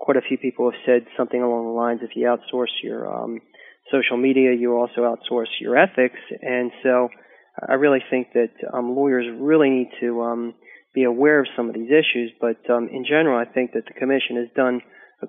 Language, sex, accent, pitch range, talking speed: English, male, American, 120-130 Hz, 210 wpm